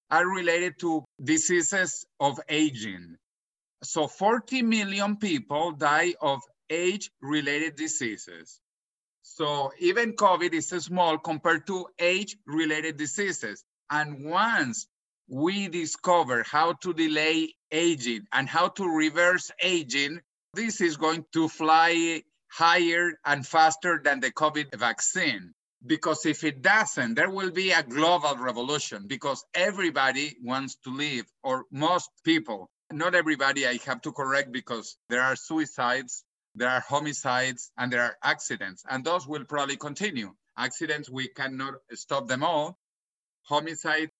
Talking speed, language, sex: 130 wpm, English, male